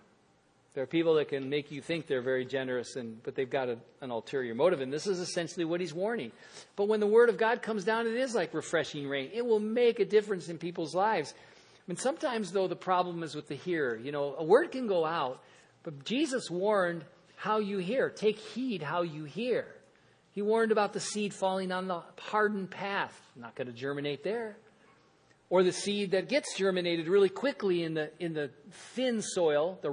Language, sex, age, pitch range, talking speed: English, male, 50-69, 155-210 Hz, 215 wpm